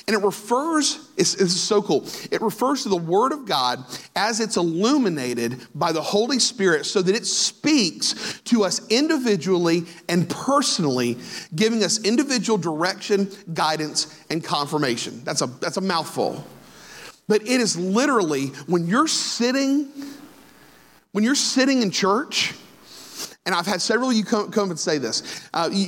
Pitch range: 160-225 Hz